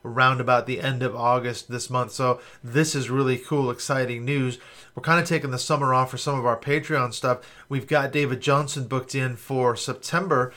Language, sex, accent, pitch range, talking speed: English, male, American, 125-140 Hz, 205 wpm